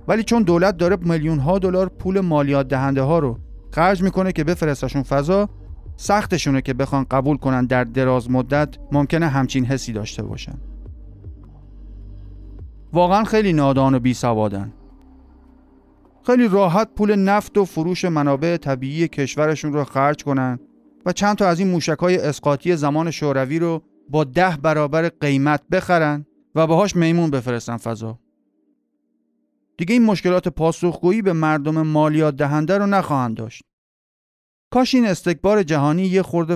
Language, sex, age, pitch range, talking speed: Persian, male, 30-49, 135-180 Hz, 140 wpm